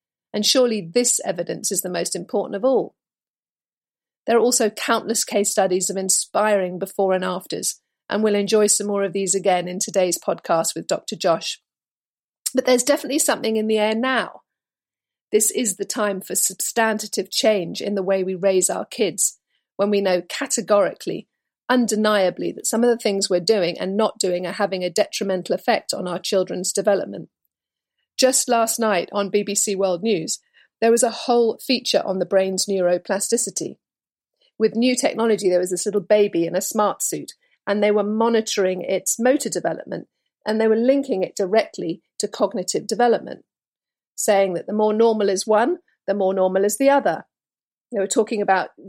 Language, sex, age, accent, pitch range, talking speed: English, female, 40-59, British, 190-230 Hz, 175 wpm